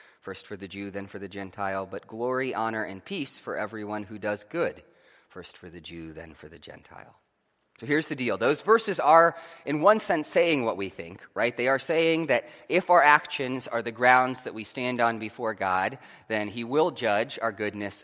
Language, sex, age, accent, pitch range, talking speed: English, male, 30-49, American, 110-165 Hz, 210 wpm